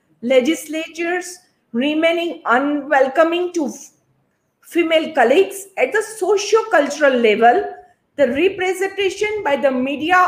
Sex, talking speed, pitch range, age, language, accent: female, 95 wpm, 265-360 Hz, 50-69, Hindi, native